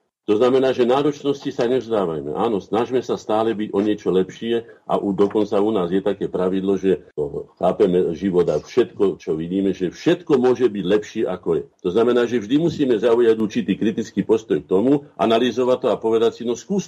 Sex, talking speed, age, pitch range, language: male, 190 wpm, 50-69, 100-125 Hz, Slovak